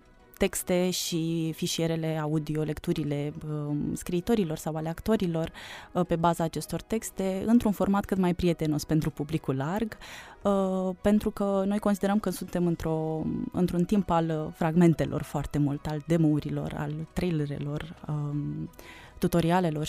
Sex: female